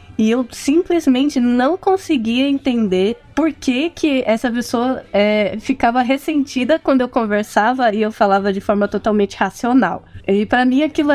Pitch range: 205-260 Hz